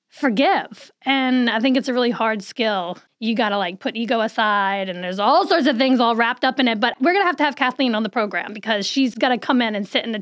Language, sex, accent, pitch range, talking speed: English, female, American, 215-265 Hz, 280 wpm